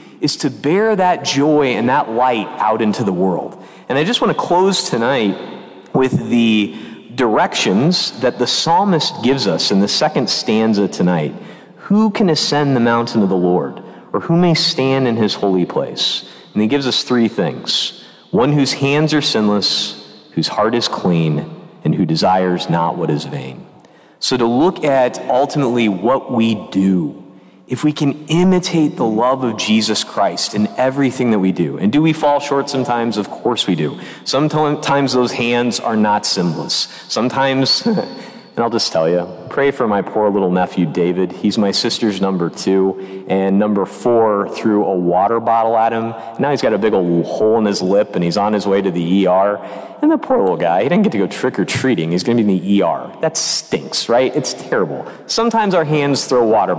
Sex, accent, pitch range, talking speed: male, American, 100-155 Hz, 190 wpm